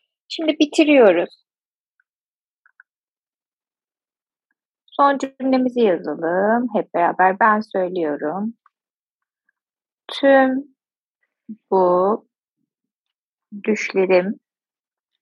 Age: 30-49